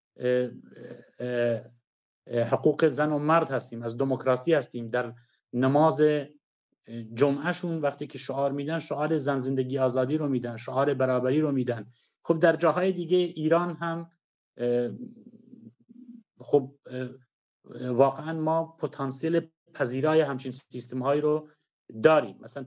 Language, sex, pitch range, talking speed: Persian, male, 130-170 Hz, 110 wpm